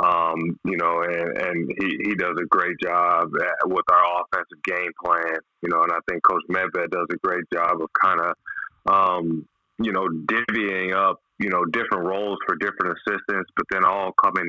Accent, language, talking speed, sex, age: American, English, 195 wpm, male, 20-39